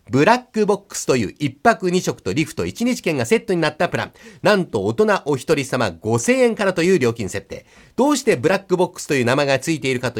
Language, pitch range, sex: Japanese, 145-215 Hz, male